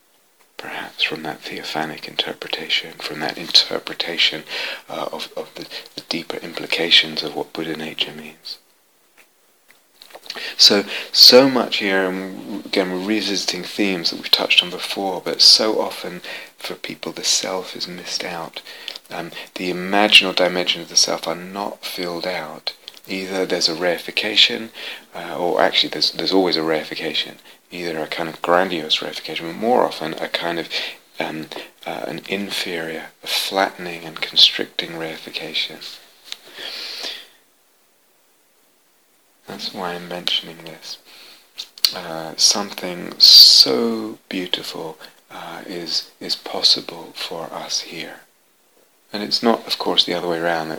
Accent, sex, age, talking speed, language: British, male, 30-49, 135 wpm, English